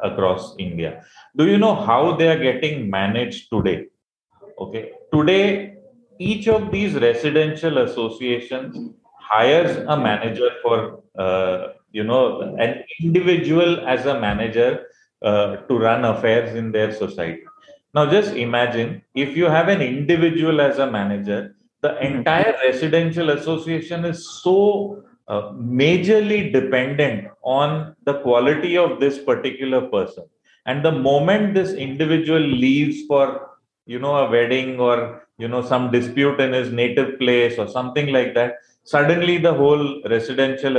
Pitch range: 120-170 Hz